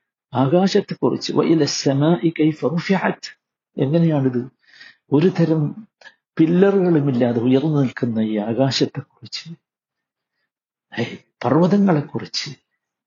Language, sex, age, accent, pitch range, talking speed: Malayalam, male, 60-79, native, 125-170 Hz, 75 wpm